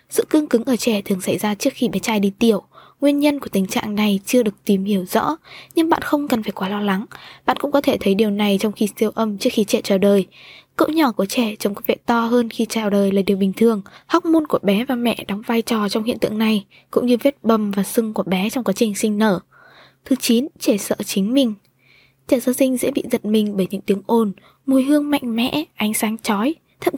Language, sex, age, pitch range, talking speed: Vietnamese, female, 20-39, 205-260 Hz, 260 wpm